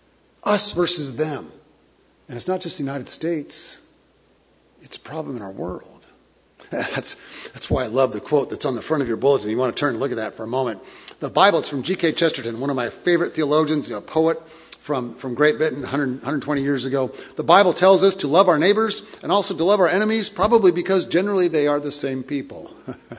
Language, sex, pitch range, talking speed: English, male, 130-170 Hz, 215 wpm